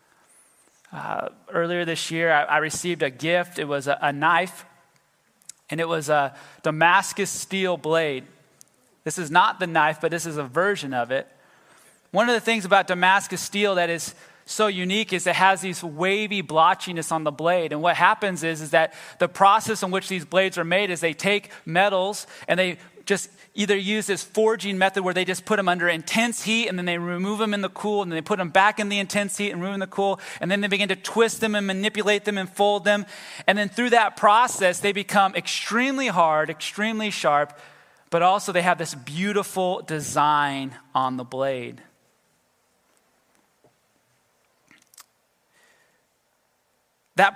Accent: American